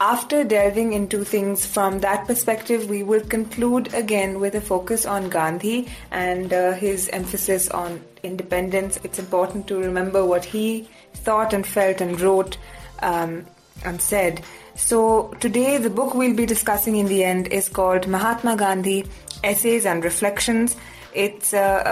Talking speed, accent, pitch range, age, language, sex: 150 wpm, Indian, 180-210 Hz, 20-39, English, female